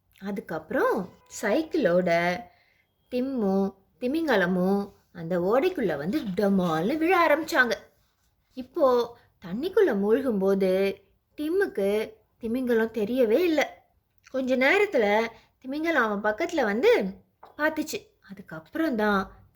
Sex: female